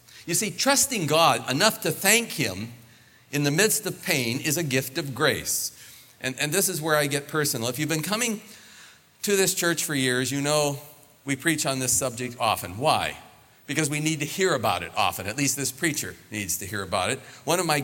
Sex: male